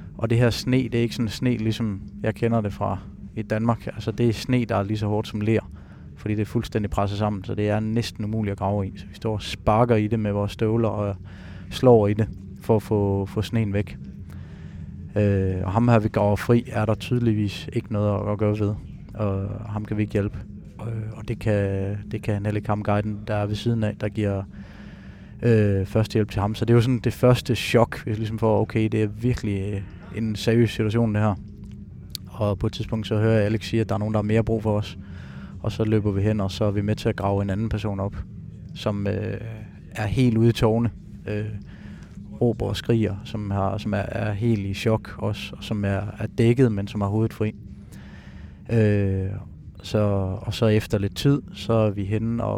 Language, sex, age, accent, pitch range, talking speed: Danish, male, 20-39, native, 100-110 Hz, 235 wpm